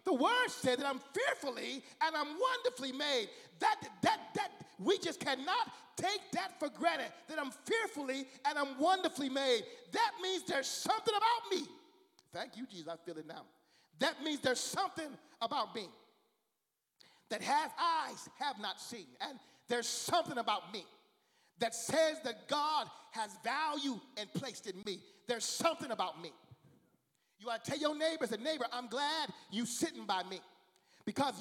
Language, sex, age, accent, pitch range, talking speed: English, male, 40-59, American, 250-350 Hz, 165 wpm